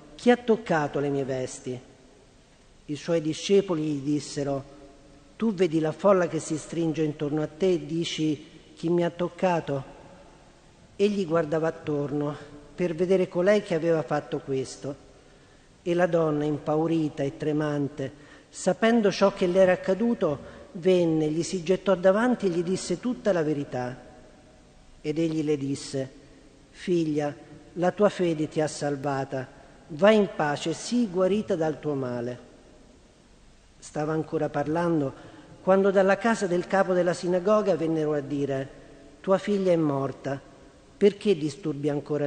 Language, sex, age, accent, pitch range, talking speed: Italian, male, 50-69, native, 145-185 Hz, 140 wpm